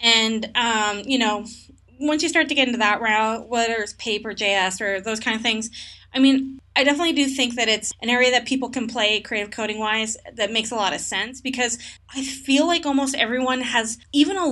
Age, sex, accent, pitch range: 20-39, female, American, 205-255 Hz